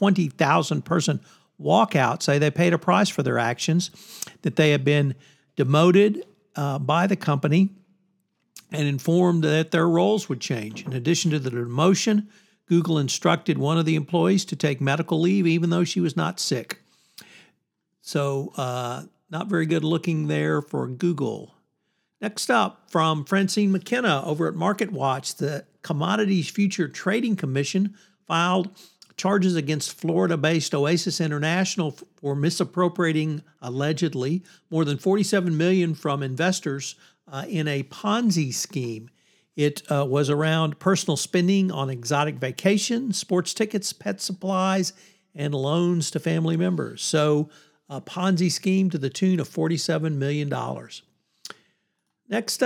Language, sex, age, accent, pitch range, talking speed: English, male, 60-79, American, 145-185 Hz, 135 wpm